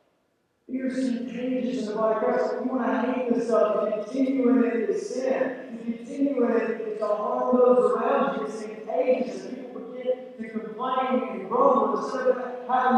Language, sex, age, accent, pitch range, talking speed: English, male, 40-59, American, 225-265 Hz, 170 wpm